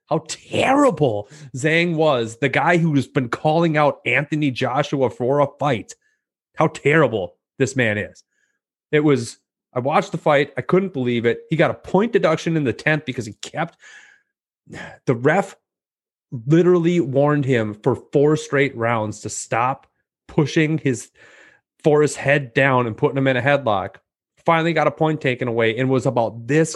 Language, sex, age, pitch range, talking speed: English, male, 30-49, 115-155 Hz, 165 wpm